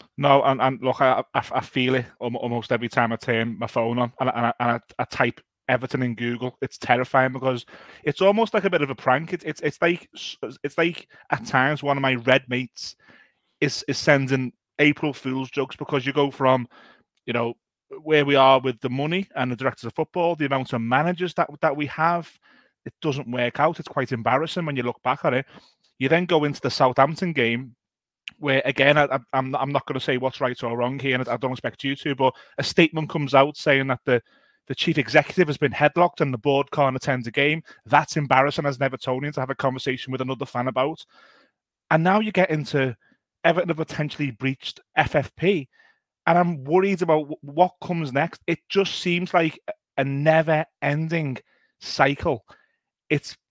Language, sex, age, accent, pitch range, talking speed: English, male, 30-49, British, 130-155 Hz, 200 wpm